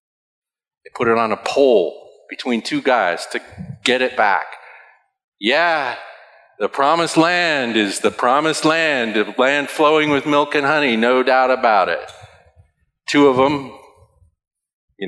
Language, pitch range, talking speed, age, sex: English, 115-180 Hz, 140 wpm, 40-59, male